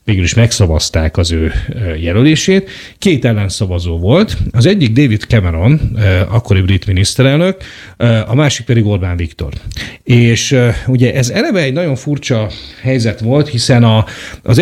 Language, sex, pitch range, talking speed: Hungarian, male, 100-130 Hz, 135 wpm